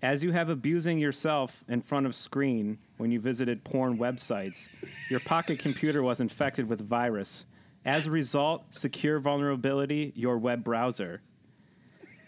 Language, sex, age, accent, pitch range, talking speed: English, male, 30-49, American, 120-145 Hz, 140 wpm